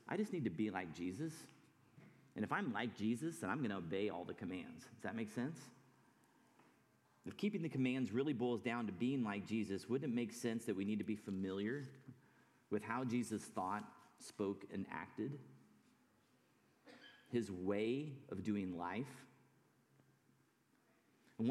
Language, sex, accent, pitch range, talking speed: English, male, American, 100-130 Hz, 160 wpm